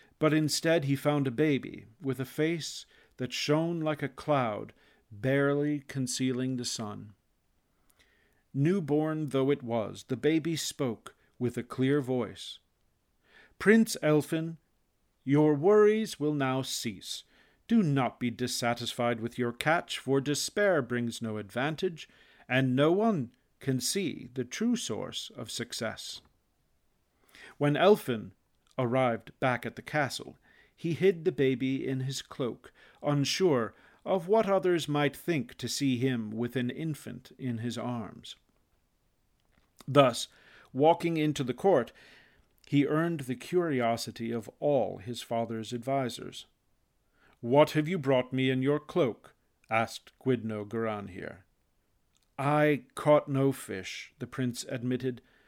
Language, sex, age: English, male, 50-69